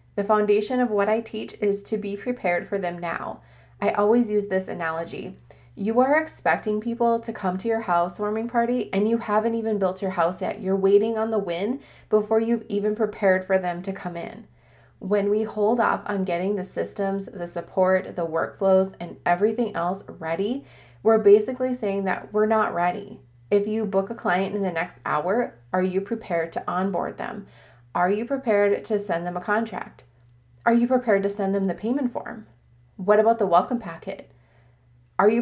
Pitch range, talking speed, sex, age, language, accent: 185-225 Hz, 190 wpm, female, 20-39, English, American